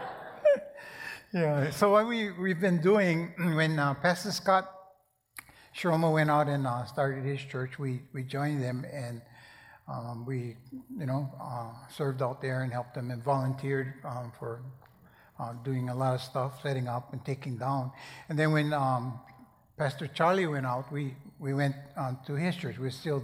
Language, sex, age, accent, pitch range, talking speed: English, male, 60-79, American, 130-155 Hz, 175 wpm